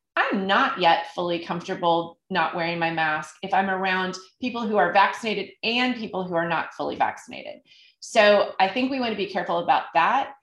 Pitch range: 175-225 Hz